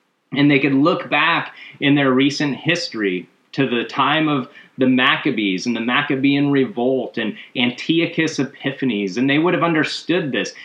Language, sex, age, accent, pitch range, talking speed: English, male, 30-49, American, 130-165 Hz, 160 wpm